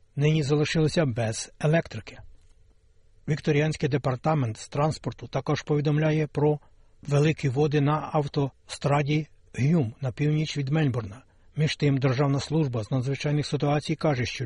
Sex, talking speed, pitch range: male, 120 wpm, 125-155 Hz